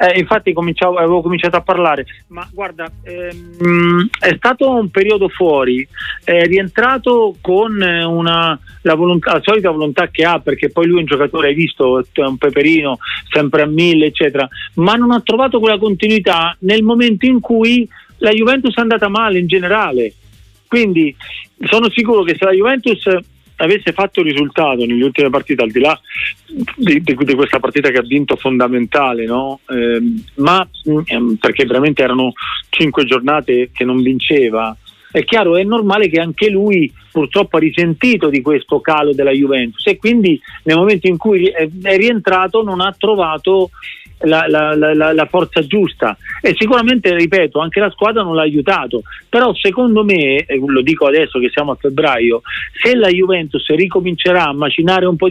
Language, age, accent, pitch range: Italian, 40-59, native, 145-195 Hz